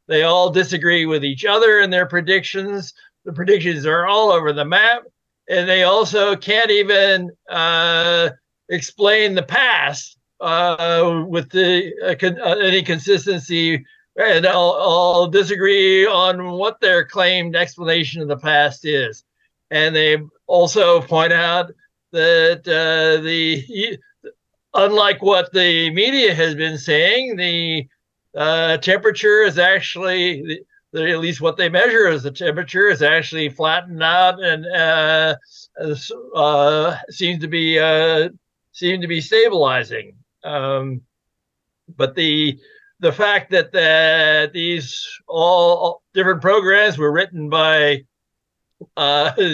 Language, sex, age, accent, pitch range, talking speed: English, male, 60-79, American, 155-190 Hz, 125 wpm